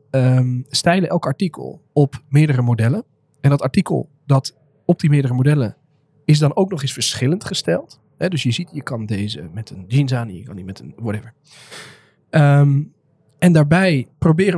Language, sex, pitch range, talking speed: Dutch, male, 125-155 Hz, 165 wpm